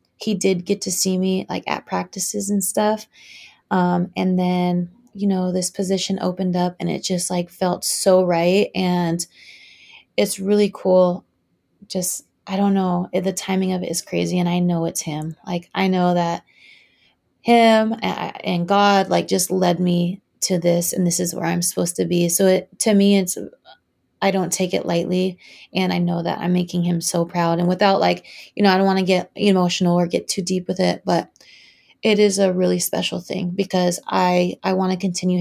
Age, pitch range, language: 20-39, 175-190 Hz, English